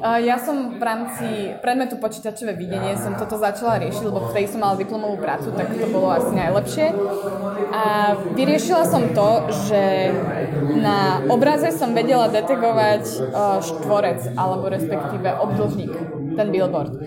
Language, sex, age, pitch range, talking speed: Slovak, female, 20-39, 190-235 Hz, 145 wpm